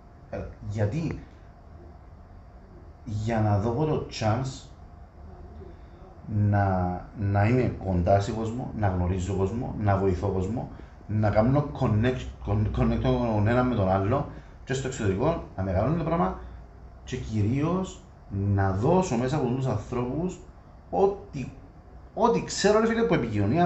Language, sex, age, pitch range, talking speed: Greek, male, 40-59, 95-145 Hz, 120 wpm